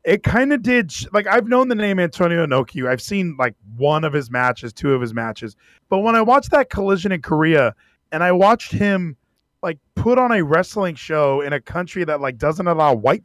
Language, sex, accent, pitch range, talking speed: English, male, American, 145-200 Hz, 215 wpm